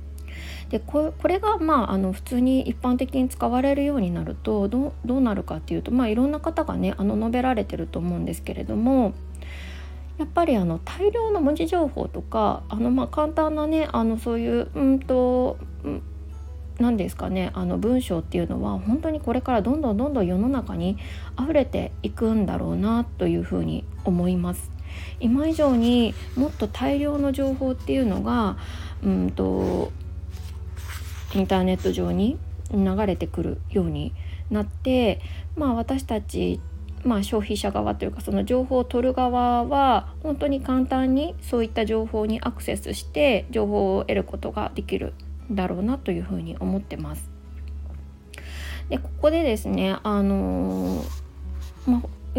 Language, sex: Japanese, female